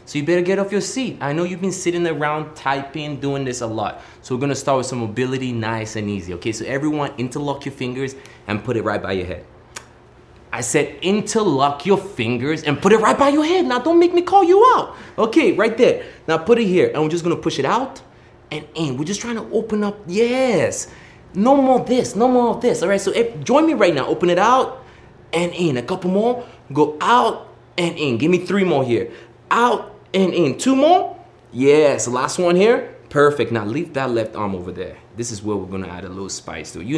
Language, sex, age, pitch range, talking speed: English, male, 20-39, 120-200 Hz, 235 wpm